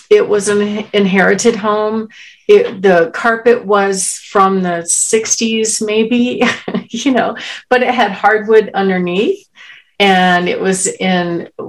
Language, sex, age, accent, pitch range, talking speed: English, female, 50-69, American, 180-230 Hz, 120 wpm